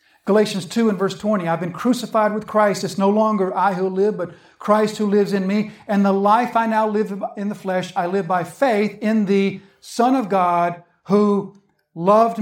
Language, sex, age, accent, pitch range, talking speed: English, male, 50-69, American, 175-220 Hz, 205 wpm